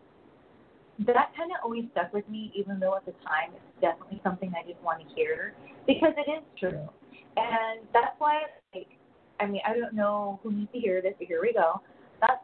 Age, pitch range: 20-39, 185-255 Hz